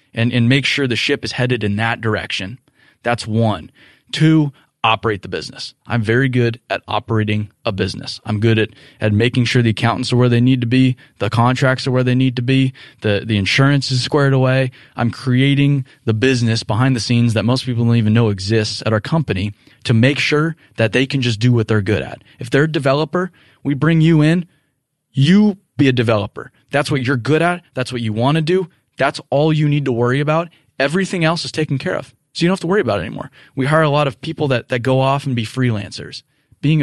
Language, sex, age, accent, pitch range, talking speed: English, male, 20-39, American, 115-145 Hz, 230 wpm